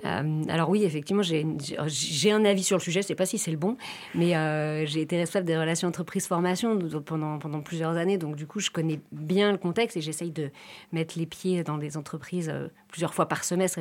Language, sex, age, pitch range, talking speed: French, female, 40-59, 160-200 Hz, 230 wpm